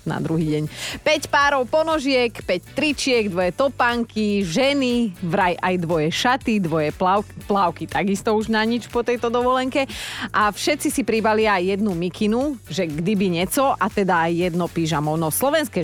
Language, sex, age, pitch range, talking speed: Slovak, female, 30-49, 180-240 Hz, 160 wpm